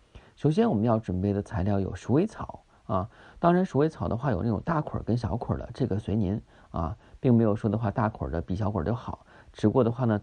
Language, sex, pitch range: Chinese, male, 105-130 Hz